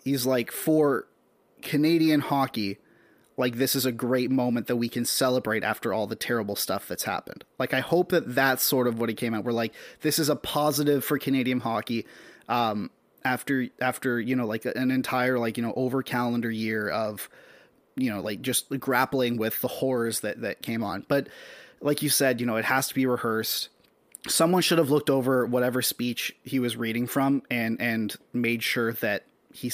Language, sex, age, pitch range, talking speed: English, male, 30-49, 125-155 Hz, 195 wpm